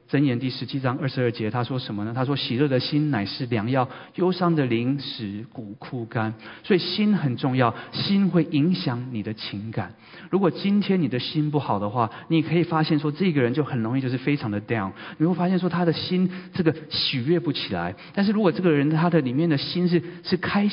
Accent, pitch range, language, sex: native, 125-175 Hz, Chinese, male